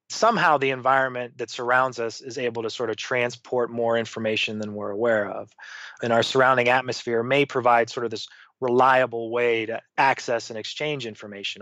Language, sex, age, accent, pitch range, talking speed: English, male, 20-39, American, 115-135 Hz, 175 wpm